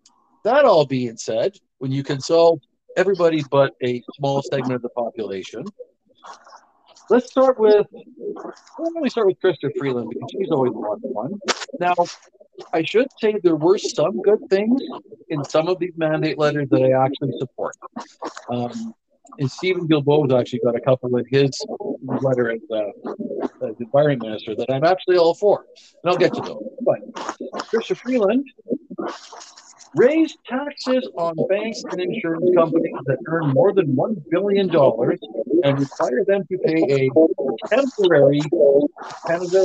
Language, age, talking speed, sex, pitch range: English, 50-69, 155 wpm, male, 140-215 Hz